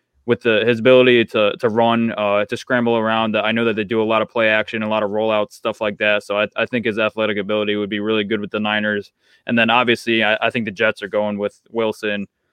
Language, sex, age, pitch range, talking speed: English, male, 20-39, 110-120 Hz, 260 wpm